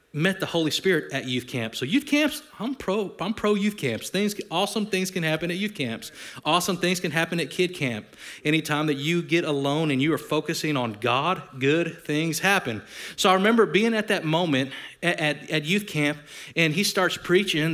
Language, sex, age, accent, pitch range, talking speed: English, male, 30-49, American, 135-190 Hz, 205 wpm